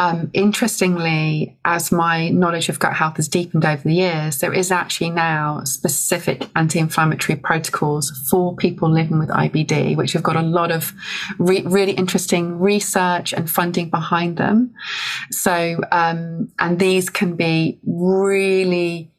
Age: 30-49